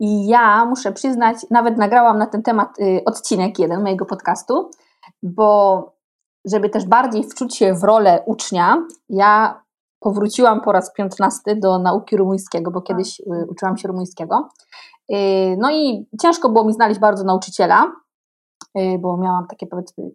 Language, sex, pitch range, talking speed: Polish, female, 195-255 Hz, 150 wpm